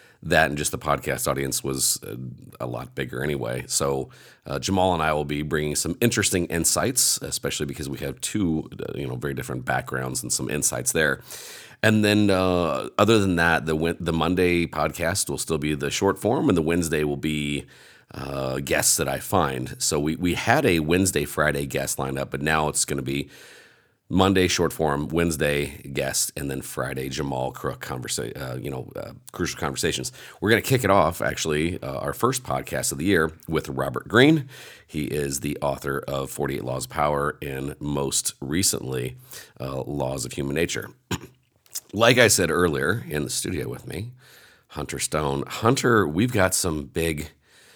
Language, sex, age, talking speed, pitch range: English, male, 40-59, 180 wpm, 70-90 Hz